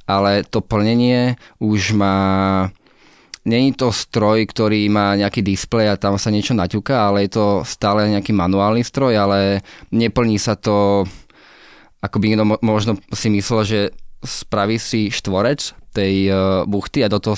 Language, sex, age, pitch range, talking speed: Slovak, male, 20-39, 100-110 Hz, 145 wpm